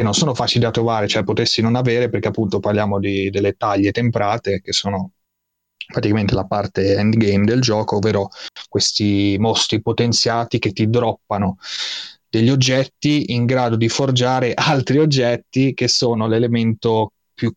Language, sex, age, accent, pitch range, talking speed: Italian, male, 30-49, native, 105-120 Hz, 150 wpm